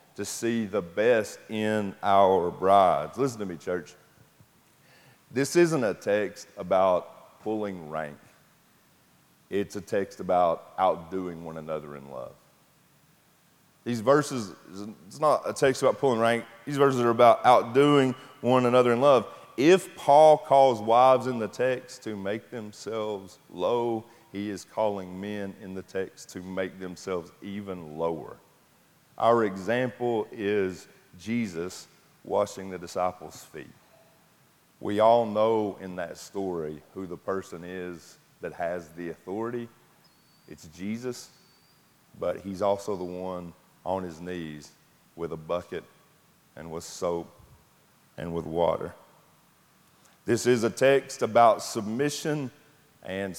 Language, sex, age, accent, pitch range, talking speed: English, male, 30-49, American, 90-120 Hz, 130 wpm